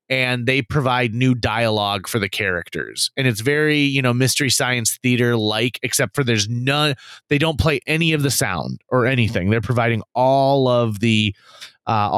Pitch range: 115-150 Hz